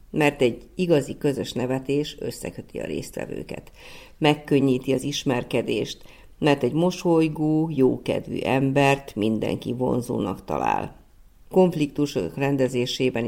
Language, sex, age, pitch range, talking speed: Hungarian, female, 50-69, 125-160 Hz, 95 wpm